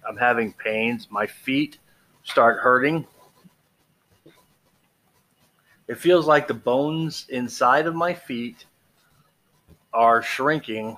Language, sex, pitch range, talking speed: English, male, 120-155 Hz, 100 wpm